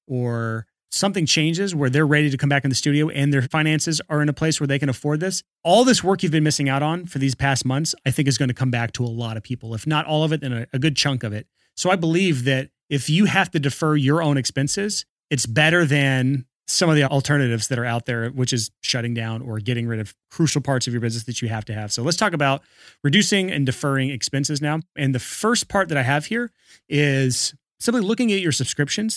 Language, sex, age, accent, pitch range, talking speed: English, male, 30-49, American, 120-155 Hz, 255 wpm